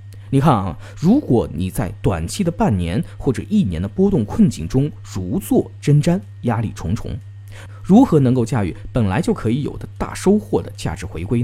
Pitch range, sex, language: 100-135 Hz, male, Chinese